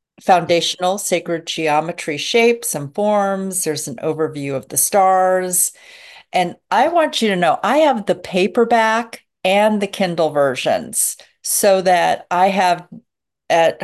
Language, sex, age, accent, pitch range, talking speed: English, female, 50-69, American, 155-210 Hz, 135 wpm